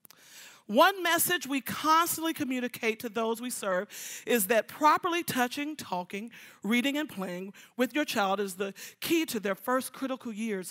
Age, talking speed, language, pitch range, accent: 40-59, 155 wpm, English, 200-280 Hz, American